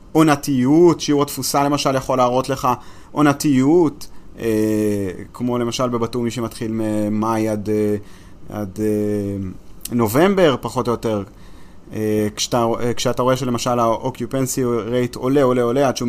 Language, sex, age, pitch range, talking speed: Hebrew, male, 30-49, 110-140 Hz, 120 wpm